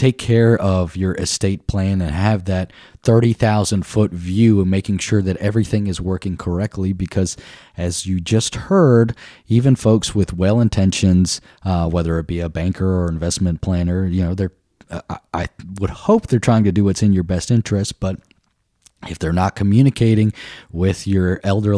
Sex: male